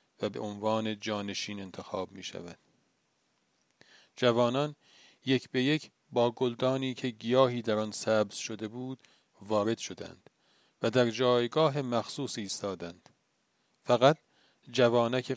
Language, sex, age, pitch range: Persian, male, 40-59, 110-130 Hz